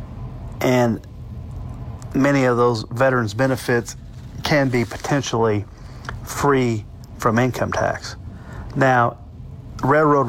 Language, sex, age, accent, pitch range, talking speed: English, male, 40-59, American, 115-135 Hz, 85 wpm